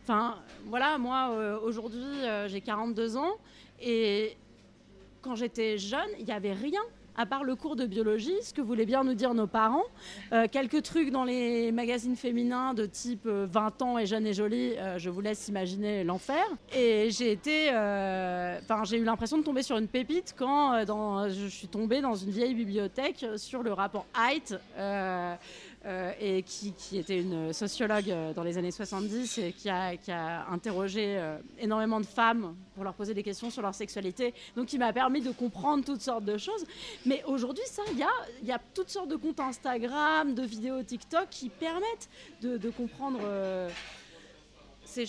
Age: 30-49